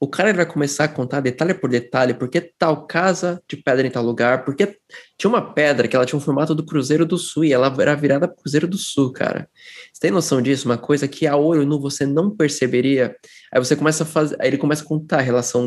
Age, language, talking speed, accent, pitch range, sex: 20-39, Portuguese, 245 wpm, Brazilian, 130-165 Hz, male